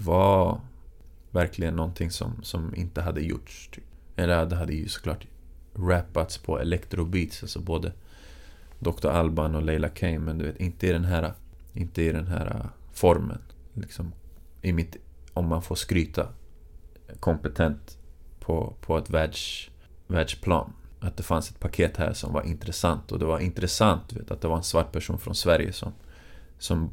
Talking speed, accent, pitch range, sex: 165 wpm, native, 75-90 Hz, male